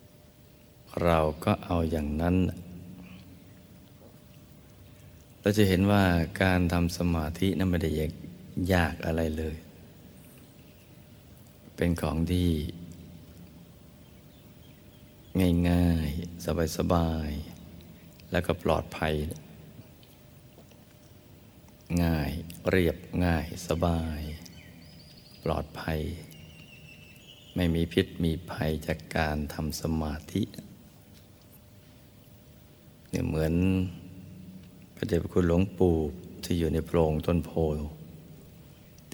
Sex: male